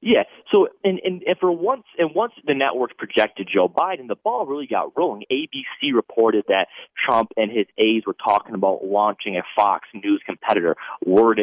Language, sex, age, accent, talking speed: English, male, 30-49, American, 185 wpm